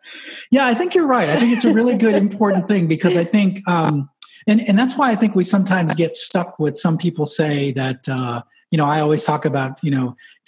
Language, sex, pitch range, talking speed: English, male, 130-165 Hz, 240 wpm